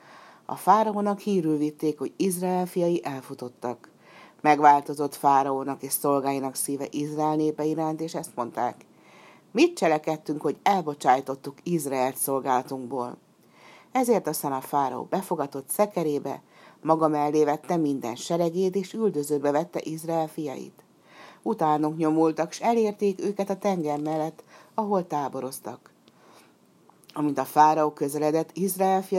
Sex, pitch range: female, 145-175 Hz